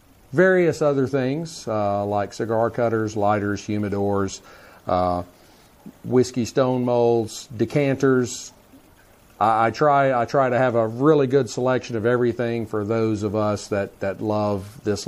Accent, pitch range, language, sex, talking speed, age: American, 105-130 Hz, English, male, 140 wpm, 40-59